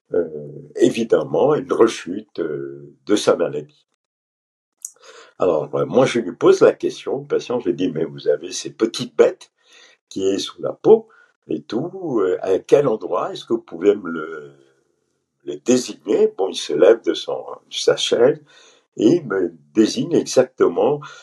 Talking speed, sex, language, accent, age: 170 wpm, male, French, French, 60-79